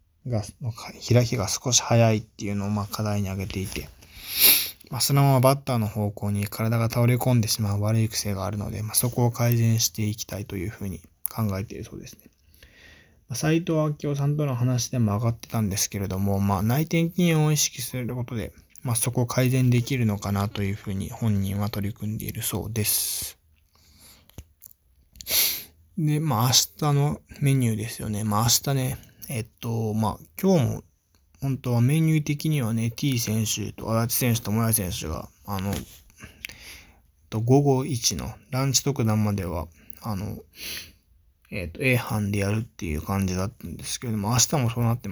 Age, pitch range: 20-39, 100-125 Hz